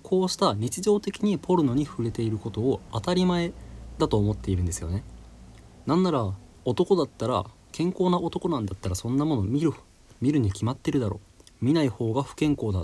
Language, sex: Japanese, male